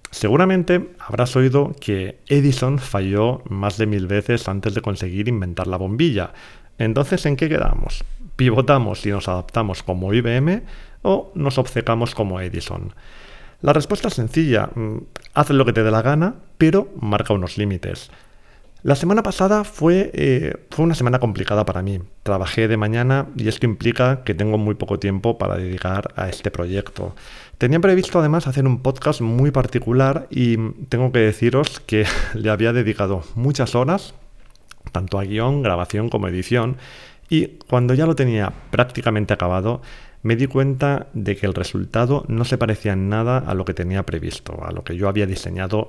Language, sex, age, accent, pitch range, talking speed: Spanish, male, 40-59, Spanish, 100-130 Hz, 165 wpm